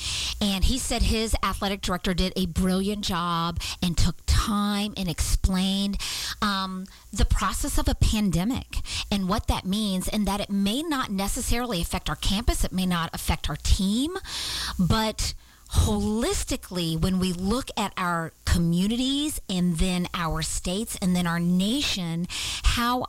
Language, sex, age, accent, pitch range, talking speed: English, female, 40-59, American, 175-210 Hz, 150 wpm